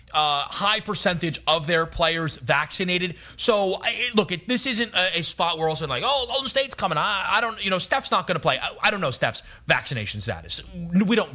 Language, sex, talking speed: English, male, 215 wpm